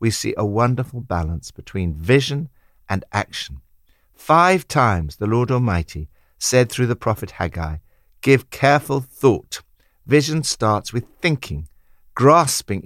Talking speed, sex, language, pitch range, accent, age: 125 wpm, male, English, 90-140 Hz, British, 60-79